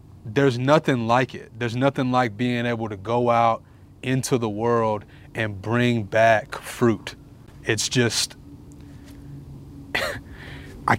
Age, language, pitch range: 20-39, English, 110-130 Hz